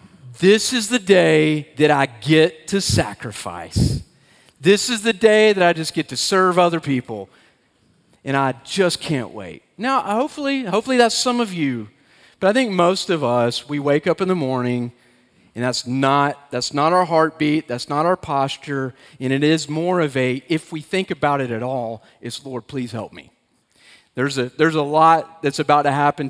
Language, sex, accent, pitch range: English, male, American, 135-185 Hz